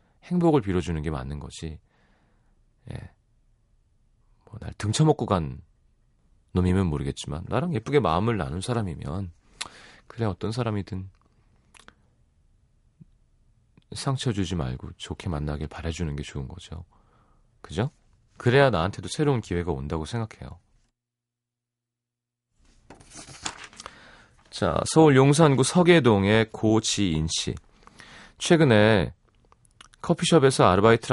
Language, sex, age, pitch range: Korean, male, 40-59, 95-120 Hz